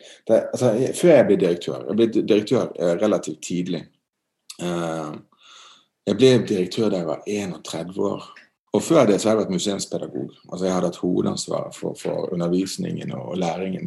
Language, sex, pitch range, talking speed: Danish, male, 100-130 Hz, 150 wpm